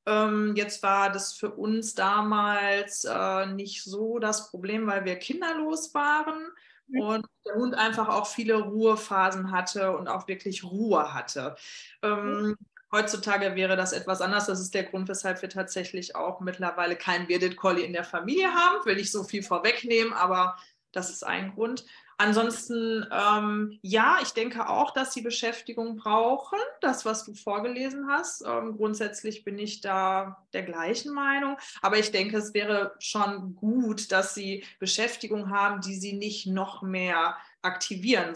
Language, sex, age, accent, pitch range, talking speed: German, female, 20-39, German, 190-230 Hz, 160 wpm